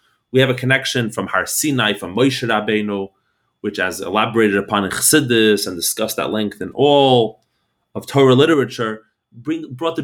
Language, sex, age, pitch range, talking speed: English, male, 30-49, 110-135 Hz, 160 wpm